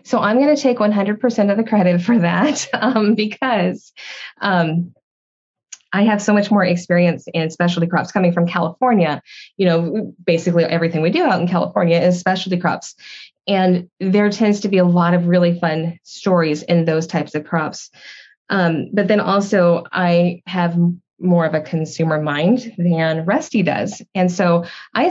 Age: 20-39